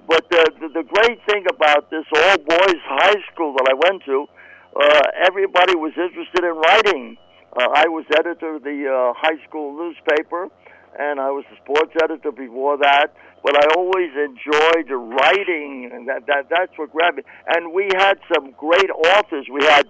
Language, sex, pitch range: English, male, 145-180 Hz